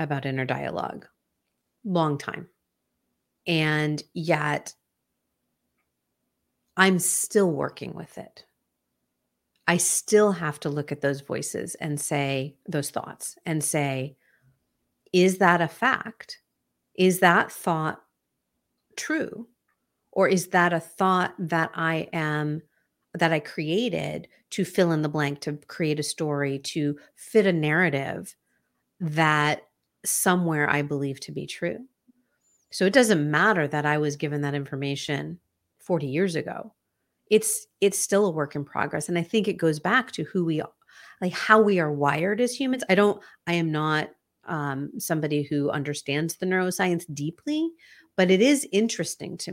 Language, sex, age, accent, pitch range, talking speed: English, female, 50-69, American, 150-195 Hz, 145 wpm